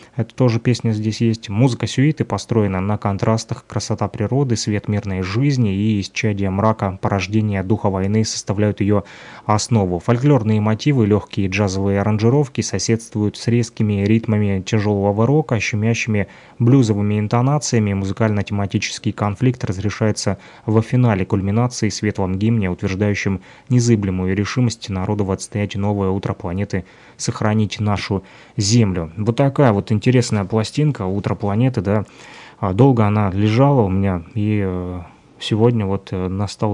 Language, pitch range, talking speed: Russian, 100-115 Hz, 120 wpm